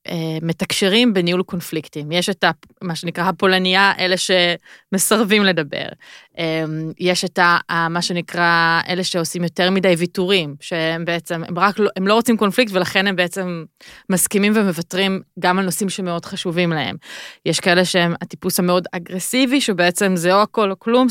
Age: 20-39